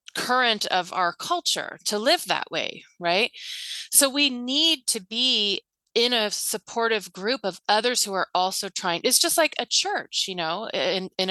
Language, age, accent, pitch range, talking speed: English, 30-49, American, 185-225 Hz, 175 wpm